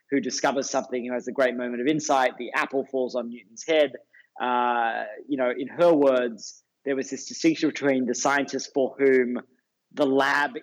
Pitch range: 125-150 Hz